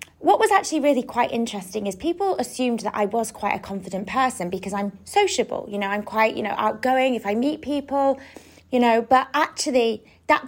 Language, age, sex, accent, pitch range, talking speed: English, 20-39, female, British, 200-255 Hz, 200 wpm